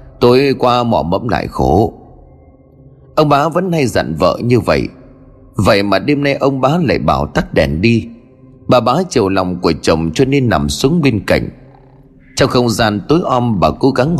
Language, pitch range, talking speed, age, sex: Vietnamese, 95-140 Hz, 190 wpm, 30-49, male